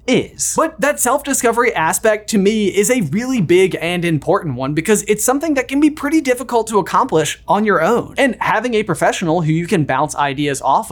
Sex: male